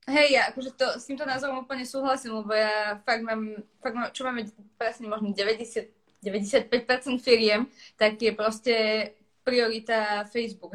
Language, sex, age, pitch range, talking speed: Slovak, female, 20-39, 210-235 Hz, 150 wpm